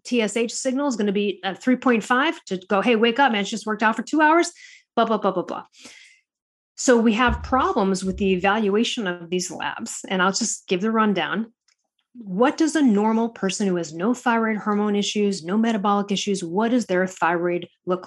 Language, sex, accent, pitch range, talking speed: English, female, American, 195-250 Hz, 205 wpm